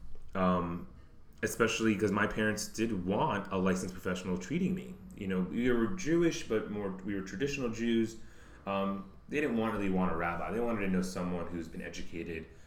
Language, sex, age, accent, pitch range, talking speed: English, male, 30-49, American, 85-100 Hz, 185 wpm